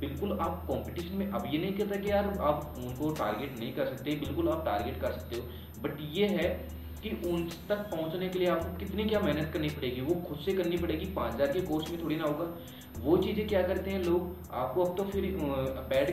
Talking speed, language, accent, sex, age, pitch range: 225 wpm, Hindi, native, male, 30-49, 115-175 Hz